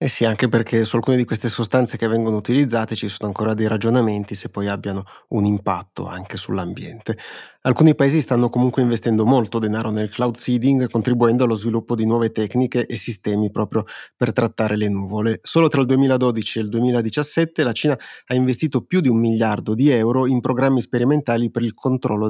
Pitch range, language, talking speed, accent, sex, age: 110-130 Hz, Italian, 190 wpm, native, male, 30-49